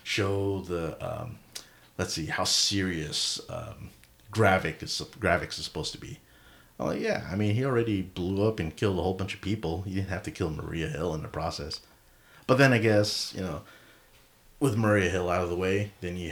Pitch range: 90-105 Hz